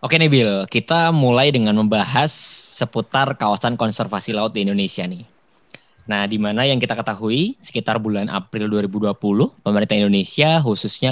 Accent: native